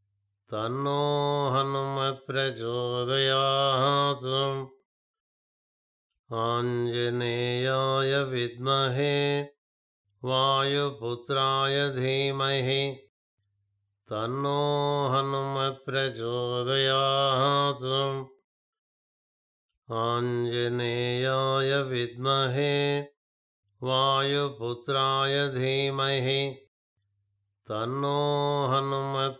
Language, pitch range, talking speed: Telugu, 120-140 Hz, 30 wpm